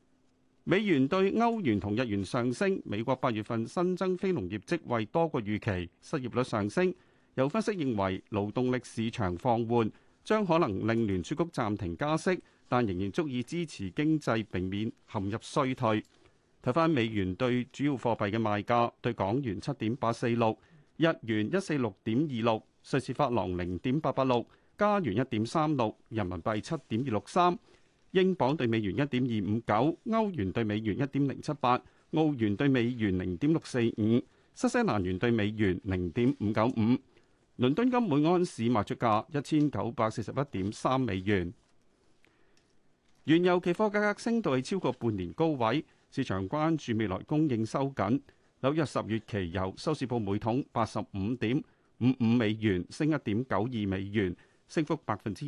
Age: 40-59